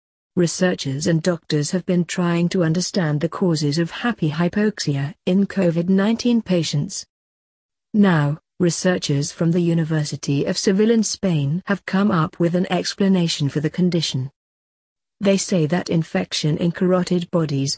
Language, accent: English, British